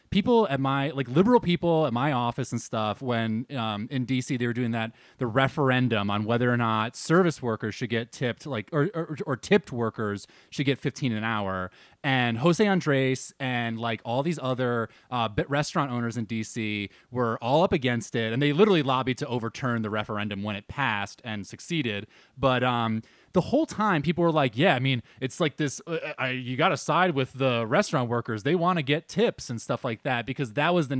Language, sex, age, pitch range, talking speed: English, male, 20-39, 120-170 Hz, 210 wpm